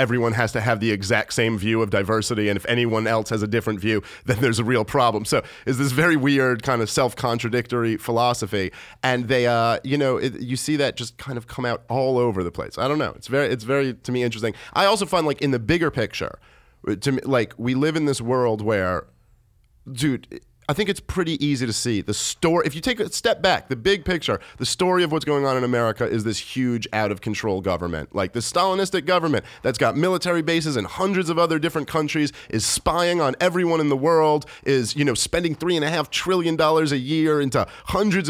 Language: English